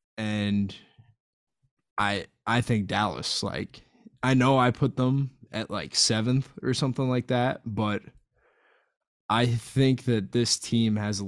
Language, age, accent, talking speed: English, 20-39, American, 140 wpm